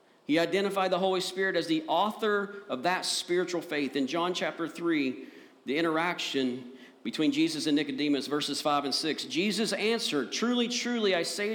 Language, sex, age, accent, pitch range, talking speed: English, male, 50-69, American, 150-205 Hz, 165 wpm